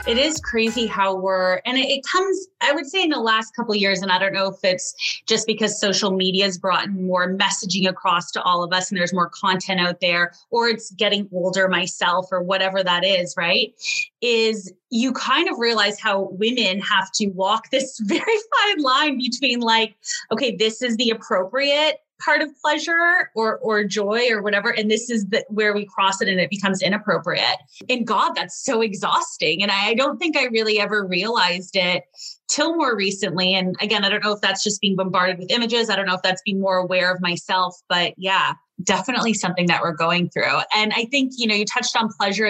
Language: English